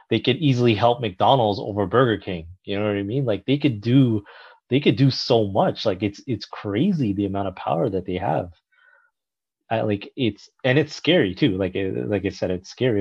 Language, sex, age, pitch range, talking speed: English, male, 30-49, 95-125 Hz, 215 wpm